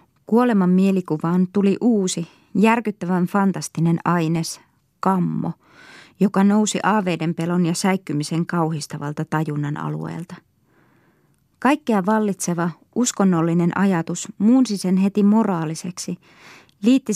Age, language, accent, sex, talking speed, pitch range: 20-39, Finnish, native, female, 90 wpm, 170-215 Hz